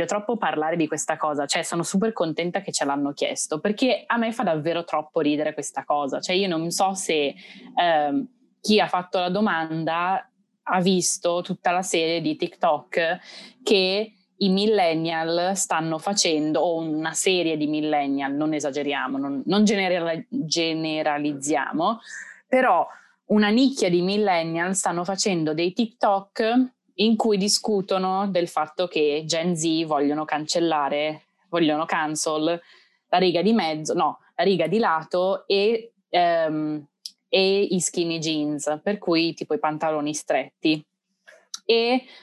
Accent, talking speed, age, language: native, 140 wpm, 20-39, Italian